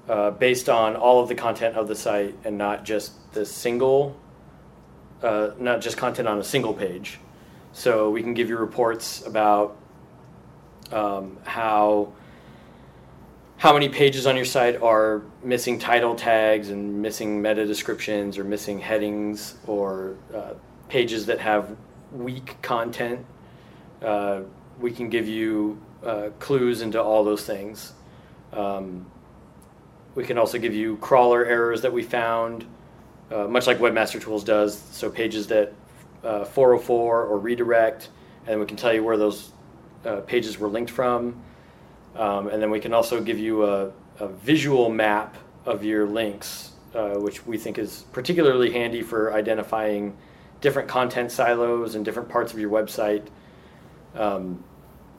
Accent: American